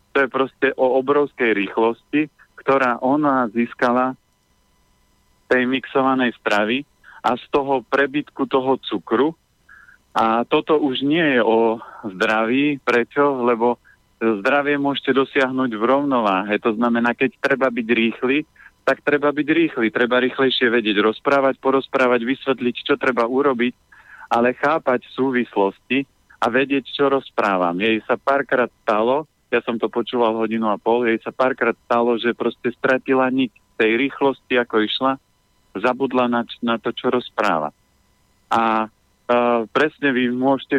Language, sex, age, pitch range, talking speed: Slovak, male, 40-59, 115-135 Hz, 135 wpm